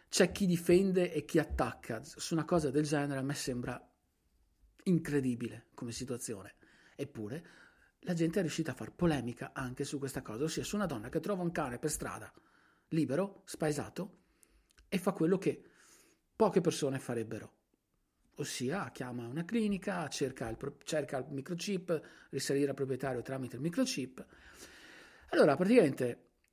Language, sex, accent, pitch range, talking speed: Italian, male, native, 130-170 Hz, 150 wpm